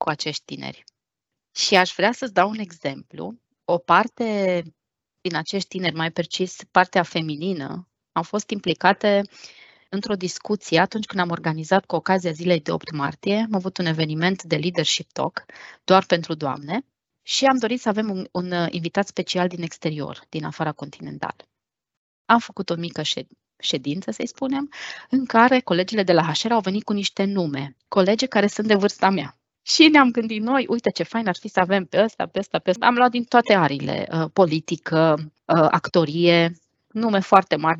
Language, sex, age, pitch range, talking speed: Romanian, female, 20-39, 170-220 Hz, 175 wpm